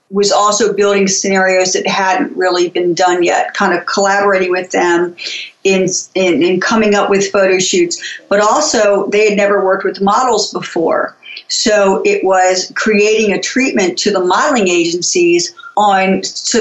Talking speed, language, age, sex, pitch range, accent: 160 wpm, English, 50-69, female, 180-210 Hz, American